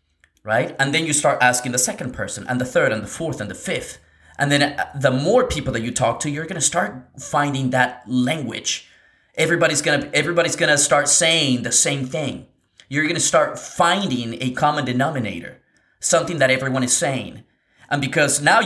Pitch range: 125-170 Hz